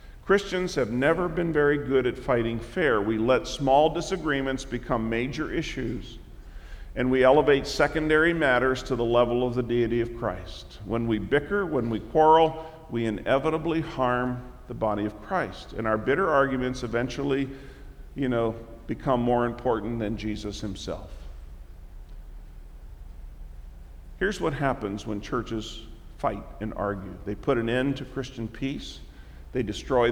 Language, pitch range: English, 110-150 Hz